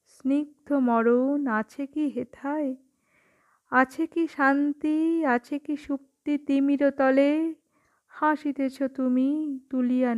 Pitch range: 245-275 Hz